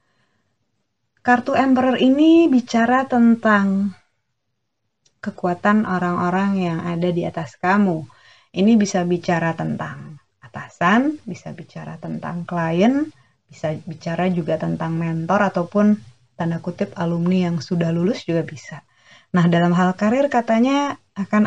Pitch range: 165-210 Hz